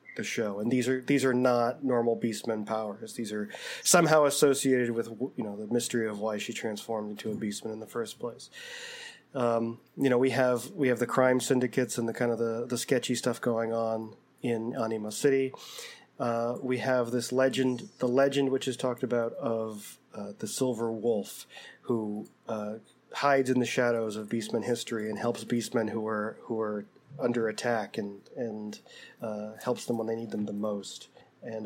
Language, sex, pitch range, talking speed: English, male, 110-130 Hz, 190 wpm